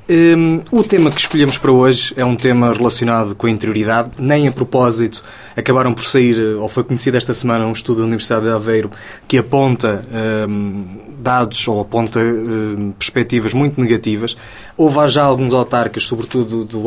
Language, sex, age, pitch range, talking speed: English, male, 20-39, 110-130 Hz, 170 wpm